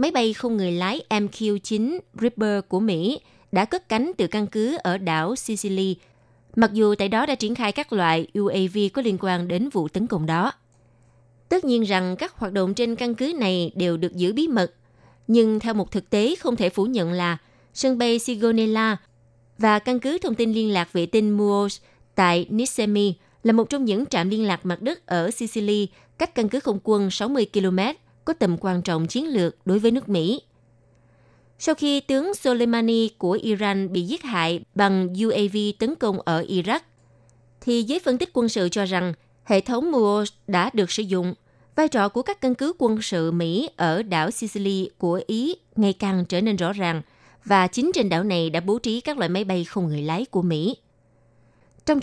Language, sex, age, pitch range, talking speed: Vietnamese, female, 20-39, 175-230 Hz, 200 wpm